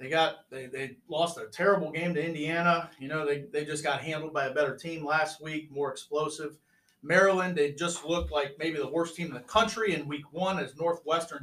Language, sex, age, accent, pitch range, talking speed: English, male, 40-59, American, 150-190 Hz, 220 wpm